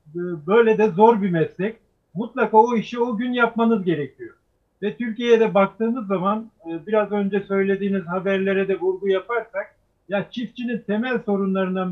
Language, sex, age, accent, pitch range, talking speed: Turkish, male, 50-69, native, 190-230 Hz, 140 wpm